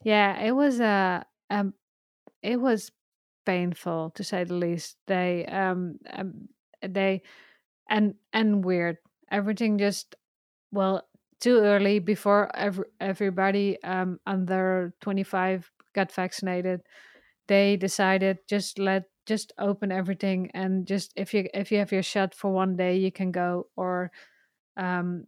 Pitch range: 185-205 Hz